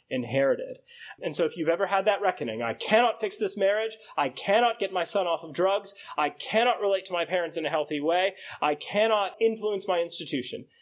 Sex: male